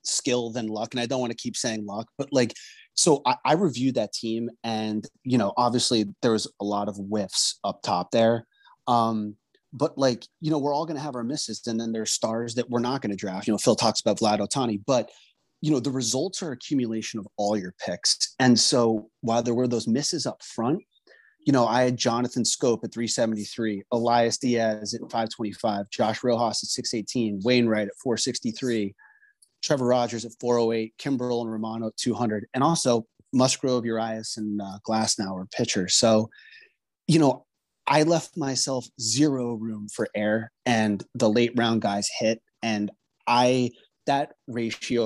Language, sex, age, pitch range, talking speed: English, male, 30-49, 110-125 Hz, 185 wpm